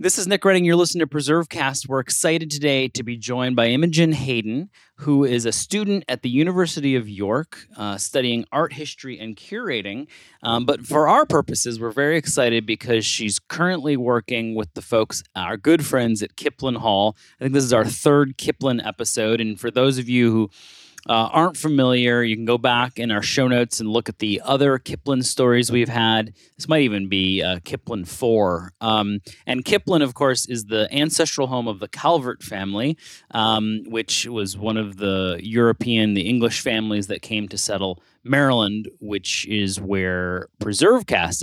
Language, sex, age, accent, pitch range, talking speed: English, male, 30-49, American, 105-135 Hz, 185 wpm